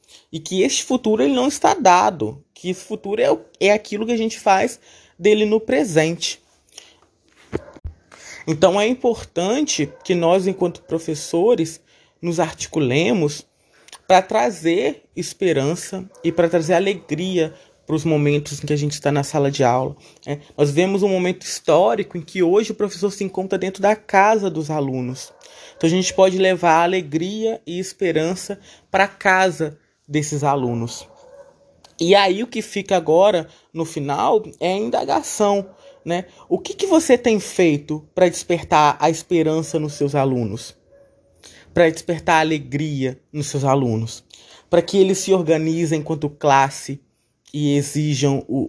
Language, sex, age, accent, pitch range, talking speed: Portuguese, male, 20-39, Brazilian, 145-195 Hz, 150 wpm